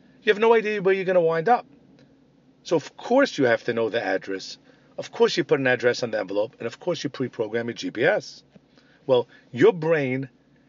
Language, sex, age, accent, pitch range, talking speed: English, male, 50-69, American, 130-175 Hz, 215 wpm